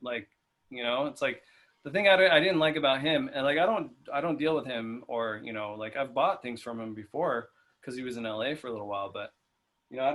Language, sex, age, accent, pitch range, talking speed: English, male, 20-39, American, 120-150 Hz, 255 wpm